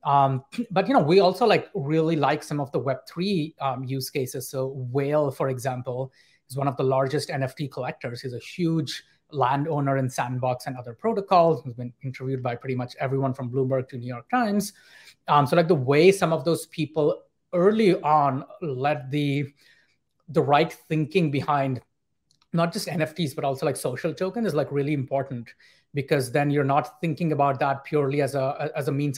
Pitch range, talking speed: 130-155 Hz, 185 wpm